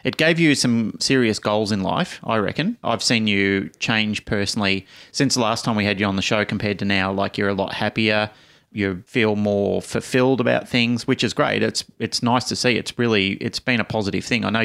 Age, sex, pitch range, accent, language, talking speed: 30-49, male, 105-120 Hz, Australian, English, 230 wpm